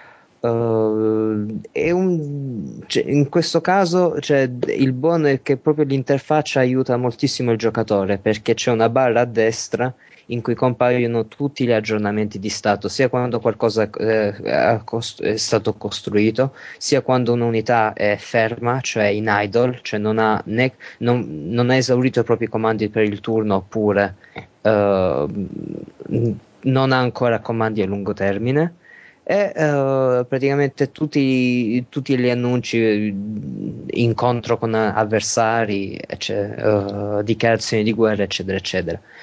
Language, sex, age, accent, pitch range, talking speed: Italian, male, 20-39, native, 110-135 Hz, 135 wpm